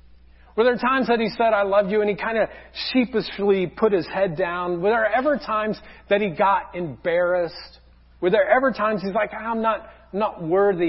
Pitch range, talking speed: 130-215 Hz, 200 wpm